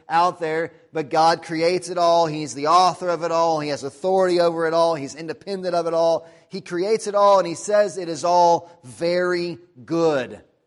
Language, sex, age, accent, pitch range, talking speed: English, male, 30-49, American, 155-180 Hz, 200 wpm